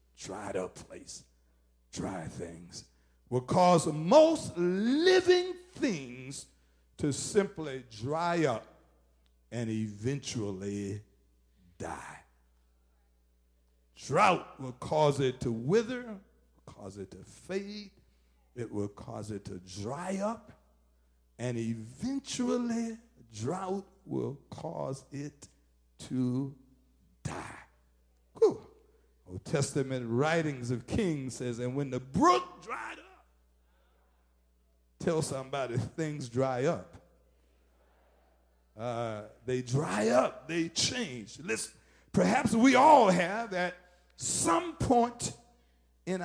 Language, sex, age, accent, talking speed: English, male, 60-79, American, 95 wpm